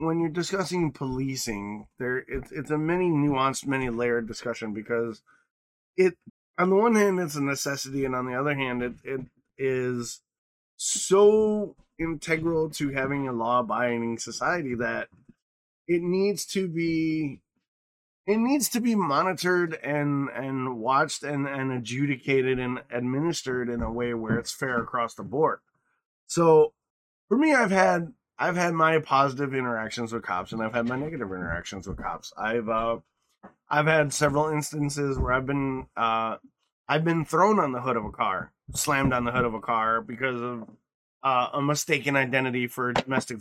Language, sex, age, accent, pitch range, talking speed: English, male, 20-39, American, 115-155 Hz, 165 wpm